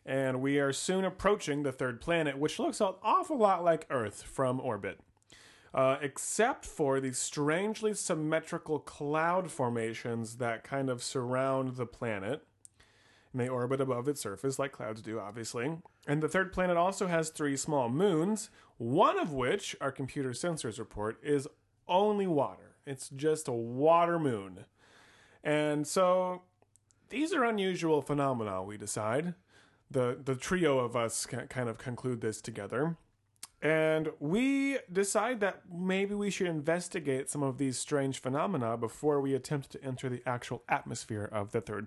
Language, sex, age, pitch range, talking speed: English, male, 30-49, 120-175 Hz, 155 wpm